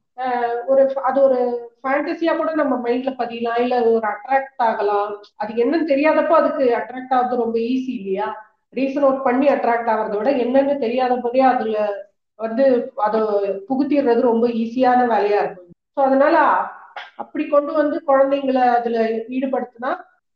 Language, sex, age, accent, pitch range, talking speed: Tamil, female, 30-49, native, 235-280 Hz, 130 wpm